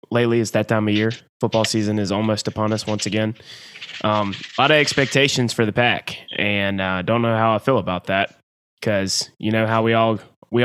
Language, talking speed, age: English, 220 wpm, 20-39